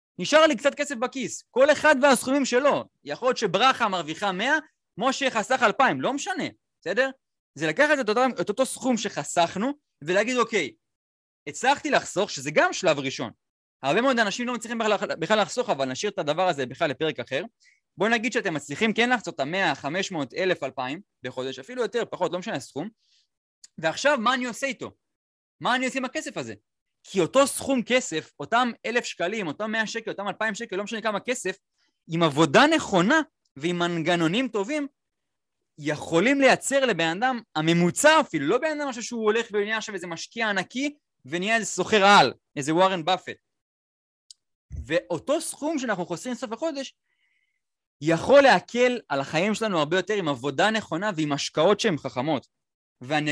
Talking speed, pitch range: 155 wpm, 165-265 Hz